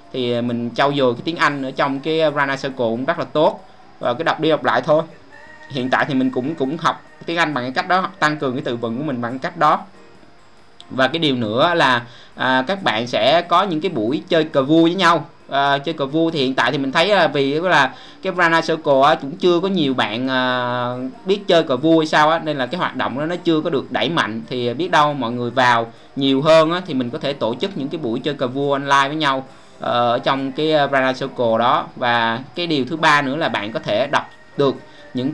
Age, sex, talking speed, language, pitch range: 20-39, male, 250 wpm, Vietnamese, 125-160 Hz